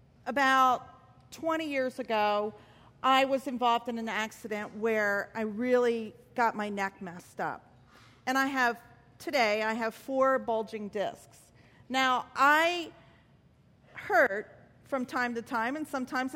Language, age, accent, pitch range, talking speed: English, 40-59, American, 185-255 Hz, 130 wpm